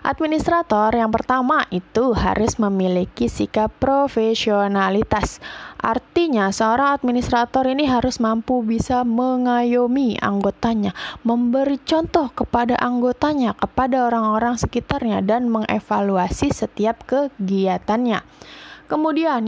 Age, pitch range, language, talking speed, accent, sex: 20-39, 215-280 Hz, Indonesian, 90 wpm, native, female